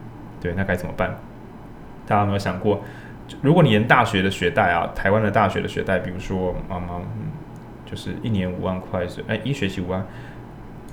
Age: 10-29